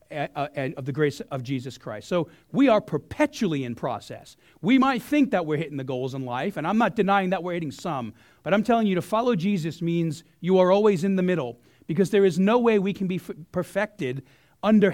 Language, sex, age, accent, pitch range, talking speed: English, male, 40-59, American, 150-200 Hz, 215 wpm